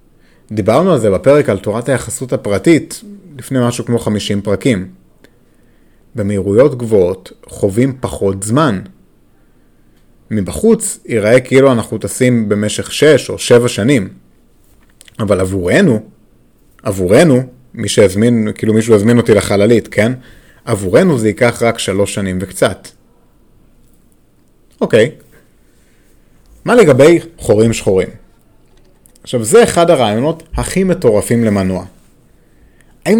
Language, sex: Hebrew, male